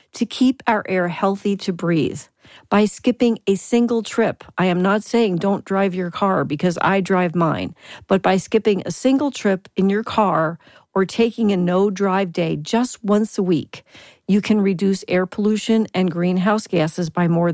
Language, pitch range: English, 175-215 Hz